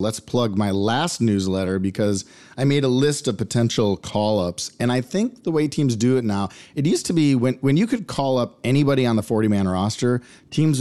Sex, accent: male, American